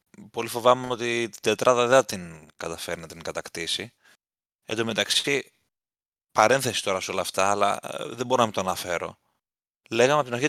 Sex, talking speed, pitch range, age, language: male, 175 wpm, 95-125 Hz, 30-49, Greek